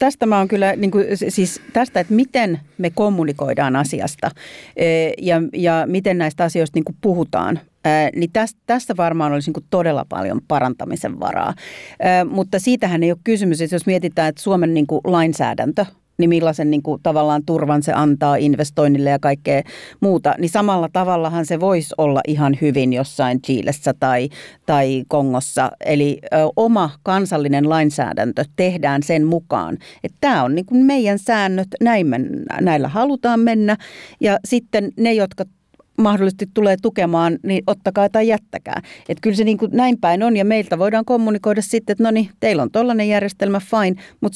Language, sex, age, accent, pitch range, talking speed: Finnish, female, 40-59, native, 155-210 Hz, 160 wpm